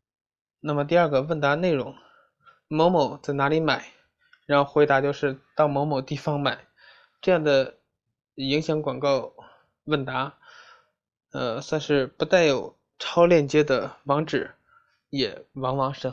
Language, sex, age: Chinese, male, 20-39